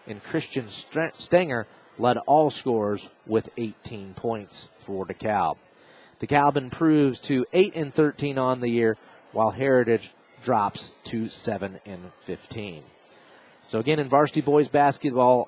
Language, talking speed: English, 120 wpm